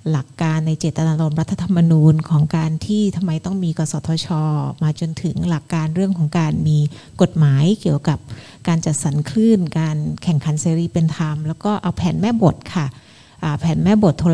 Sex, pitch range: female, 155-190 Hz